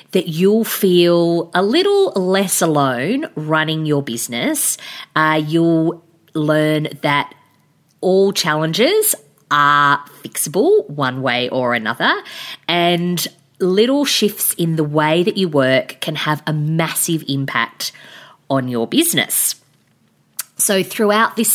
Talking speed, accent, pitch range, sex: 115 wpm, Australian, 145-200 Hz, female